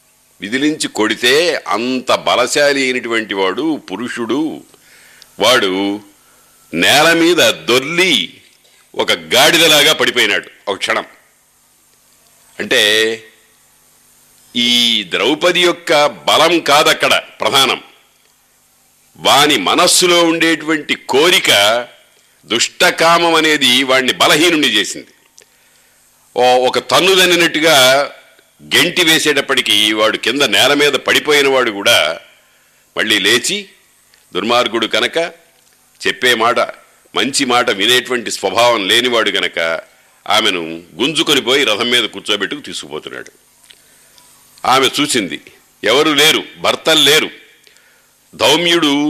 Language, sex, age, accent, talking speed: Telugu, male, 50-69, native, 85 wpm